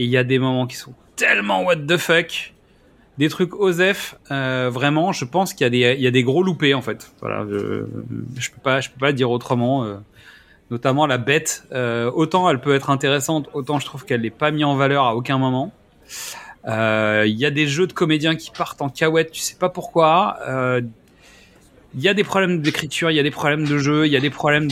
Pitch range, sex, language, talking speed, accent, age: 130-175 Hz, male, French, 225 wpm, French, 30-49